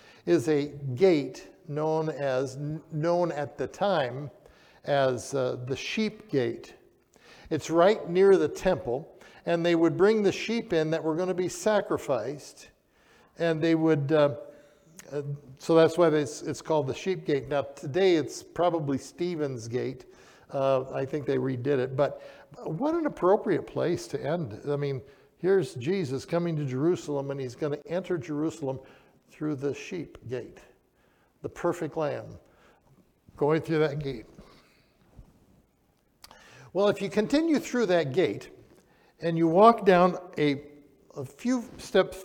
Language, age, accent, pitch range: English, 60-79, American, 140-175 Hz